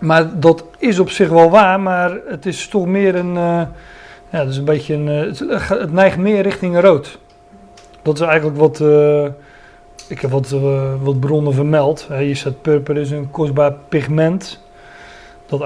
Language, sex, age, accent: Dutch, male, 40-59, Dutch